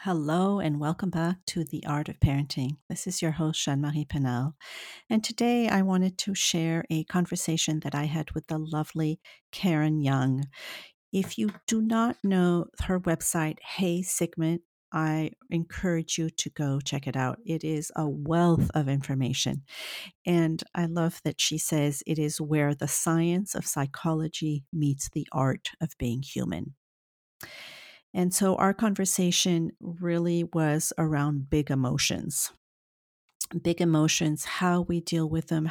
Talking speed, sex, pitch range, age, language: 150 wpm, female, 145-175 Hz, 50-69, English